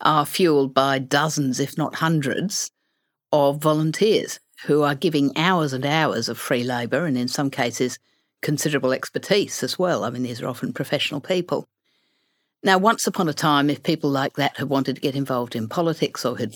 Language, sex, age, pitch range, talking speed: English, female, 50-69, 130-160 Hz, 185 wpm